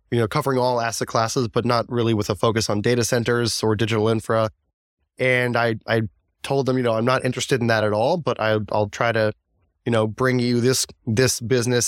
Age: 20-39